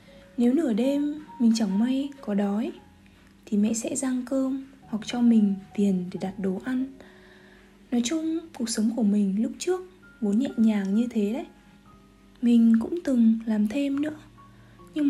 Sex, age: female, 20-39